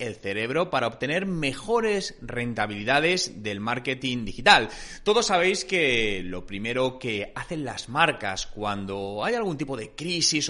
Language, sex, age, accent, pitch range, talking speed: Spanish, male, 30-49, Spanish, 125-200 Hz, 135 wpm